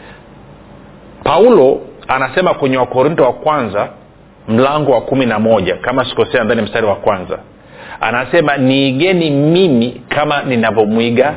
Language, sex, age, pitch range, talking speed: Swahili, male, 40-59, 125-160 Hz, 115 wpm